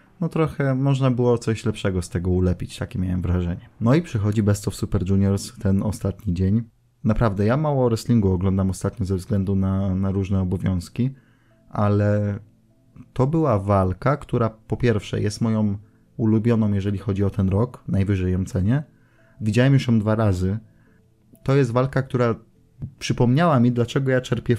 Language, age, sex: Polish, 20-39, male